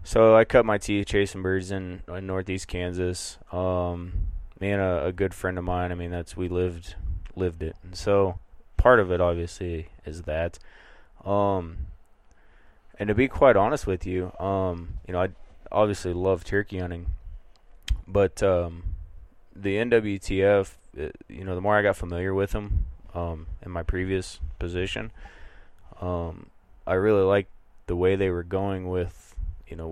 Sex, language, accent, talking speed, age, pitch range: male, English, American, 160 wpm, 20-39, 85-95 Hz